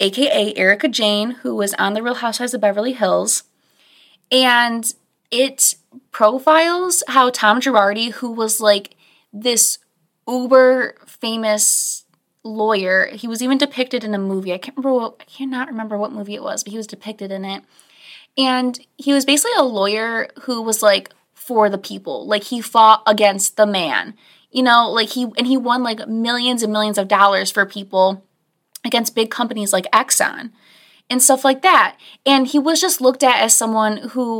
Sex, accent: female, American